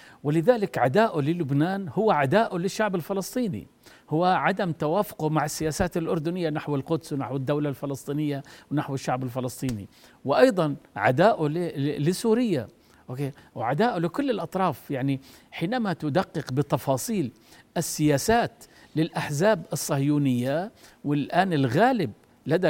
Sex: male